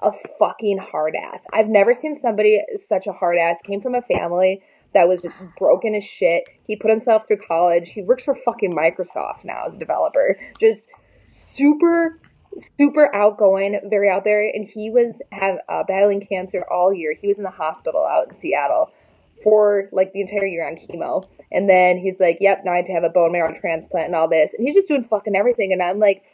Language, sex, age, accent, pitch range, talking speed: English, female, 20-39, American, 180-250 Hz, 210 wpm